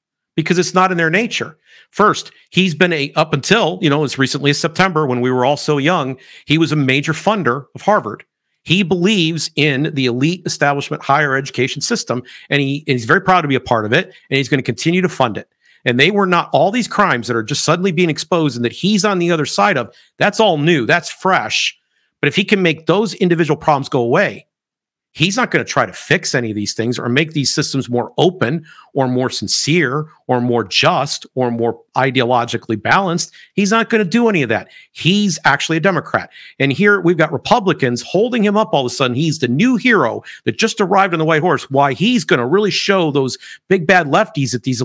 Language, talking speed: English, 225 wpm